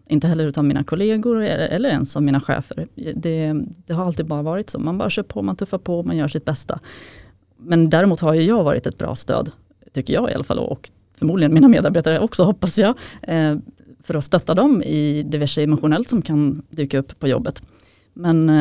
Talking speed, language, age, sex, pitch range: 205 wpm, Swedish, 30-49, female, 145-175 Hz